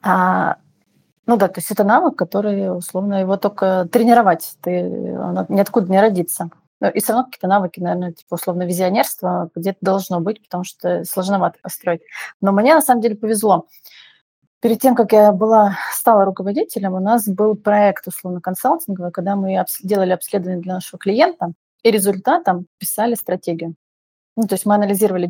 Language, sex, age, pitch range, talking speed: Russian, female, 30-49, 185-220 Hz, 160 wpm